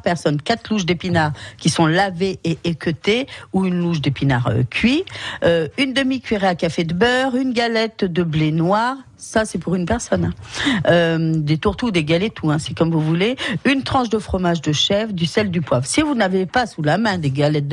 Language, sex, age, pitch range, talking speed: French, female, 50-69, 155-230 Hz, 215 wpm